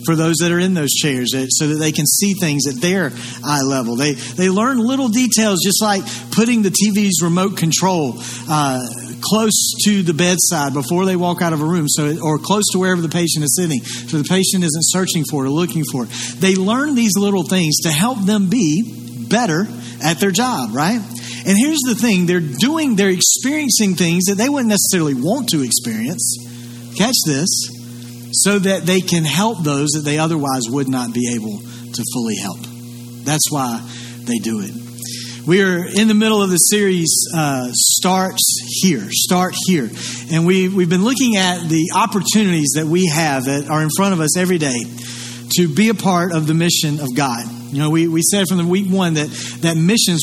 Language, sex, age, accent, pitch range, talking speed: English, male, 40-59, American, 135-190 Hz, 195 wpm